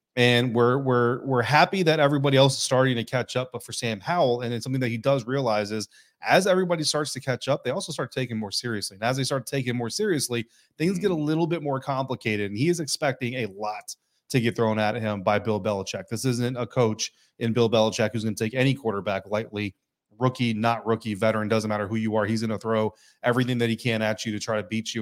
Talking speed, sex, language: 245 wpm, male, English